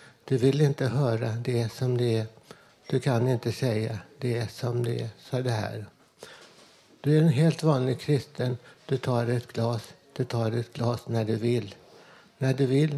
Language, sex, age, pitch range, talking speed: Swedish, male, 60-79, 115-135 Hz, 180 wpm